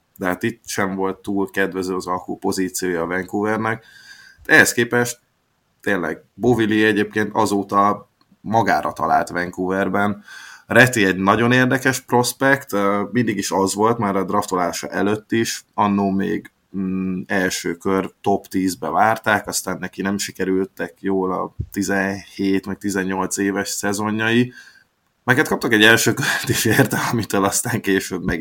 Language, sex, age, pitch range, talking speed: Hungarian, male, 20-39, 95-105 Hz, 135 wpm